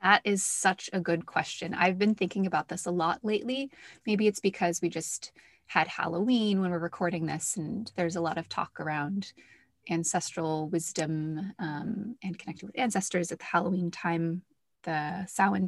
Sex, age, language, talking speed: female, 20-39, English, 170 wpm